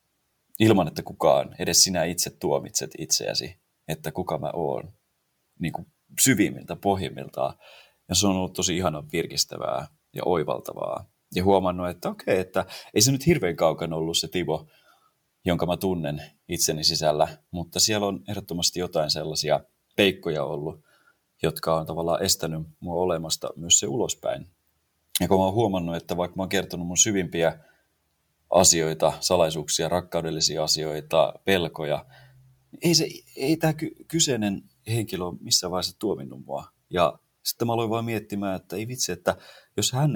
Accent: native